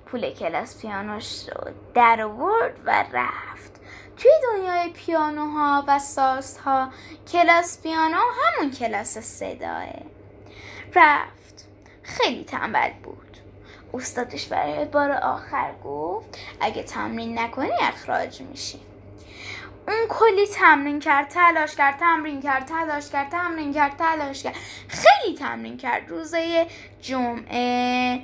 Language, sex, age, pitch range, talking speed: Persian, female, 10-29, 245-360 Hz, 110 wpm